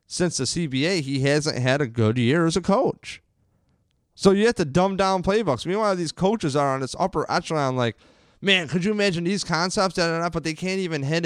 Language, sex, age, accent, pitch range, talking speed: English, male, 30-49, American, 120-160 Hz, 225 wpm